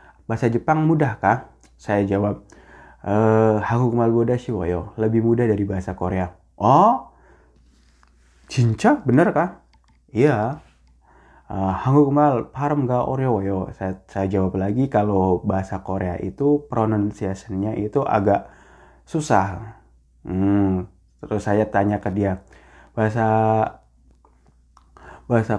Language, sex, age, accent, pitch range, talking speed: Indonesian, male, 20-39, native, 95-140 Hz, 95 wpm